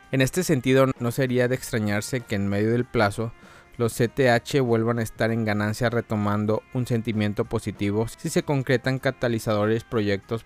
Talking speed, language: 160 wpm, Spanish